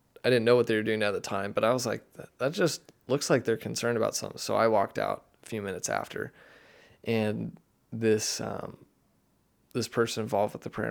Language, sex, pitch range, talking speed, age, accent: English, male, 110-125 Hz, 215 wpm, 20-39, American